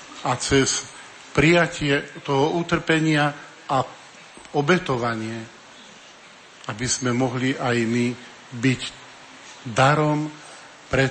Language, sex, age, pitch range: Slovak, male, 50-69, 130-160 Hz